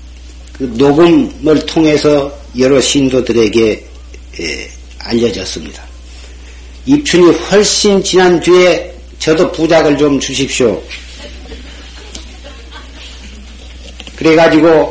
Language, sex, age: Korean, male, 40-59